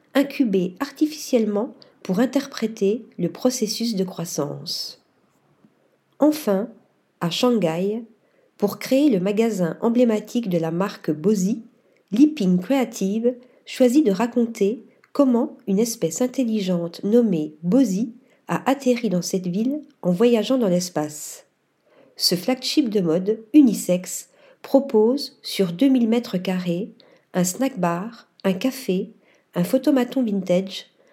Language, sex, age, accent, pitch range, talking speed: French, female, 50-69, French, 190-255 Hz, 110 wpm